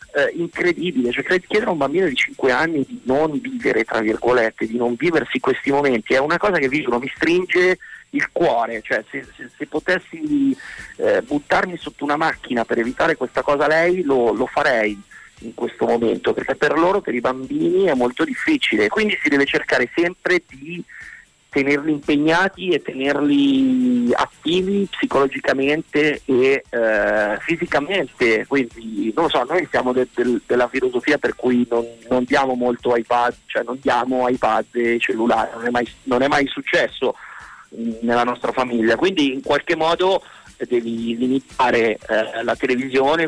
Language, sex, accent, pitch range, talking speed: Italian, male, native, 120-180 Hz, 165 wpm